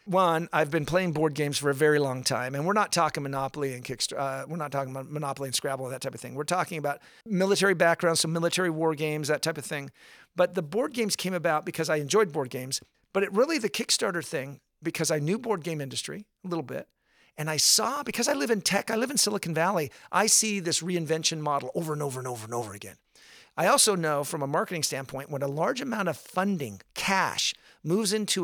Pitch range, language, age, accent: 150-195 Hz, English, 50-69, American